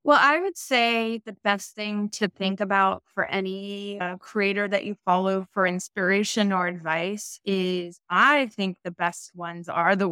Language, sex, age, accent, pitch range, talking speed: English, female, 20-39, American, 175-215 Hz, 170 wpm